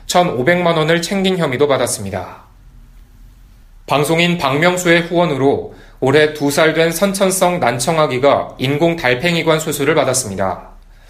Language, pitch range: Korean, 130-165 Hz